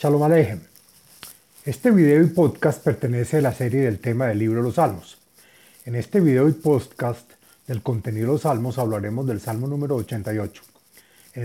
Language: Spanish